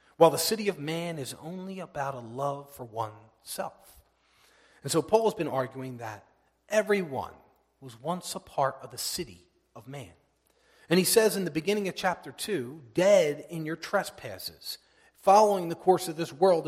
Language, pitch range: English, 130-190 Hz